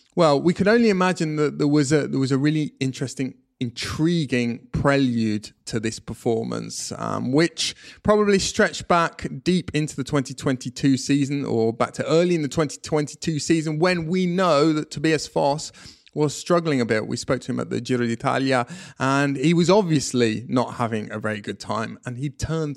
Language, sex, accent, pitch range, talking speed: English, male, British, 125-160 Hz, 190 wpm